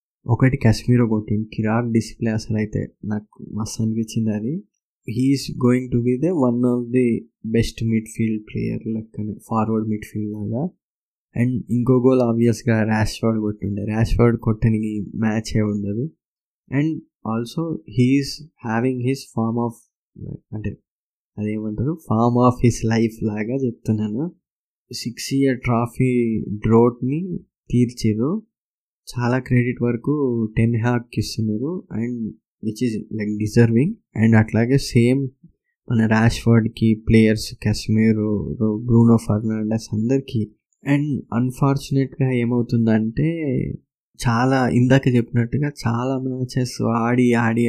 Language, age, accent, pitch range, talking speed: Telugu, 20-39, native, 110-130 Hz, 115 wpm